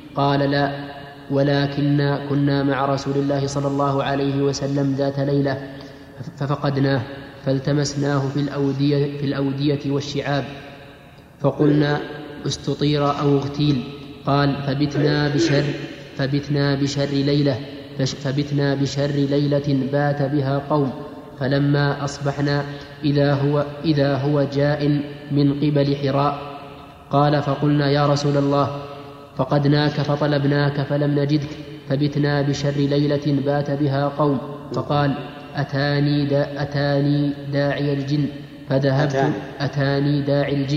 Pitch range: 140-145 Hz